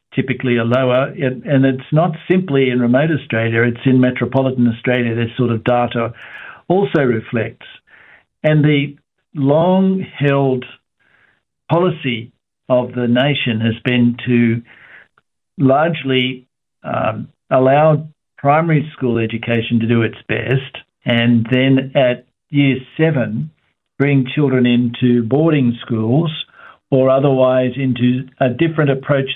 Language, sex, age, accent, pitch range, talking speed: English, male, 60-79, Australian, 120-145 Hz, 115 wpm